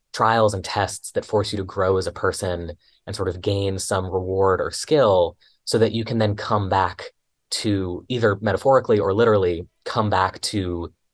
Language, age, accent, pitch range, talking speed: English, 20-39, American, 95-115 Hz, 185 wpm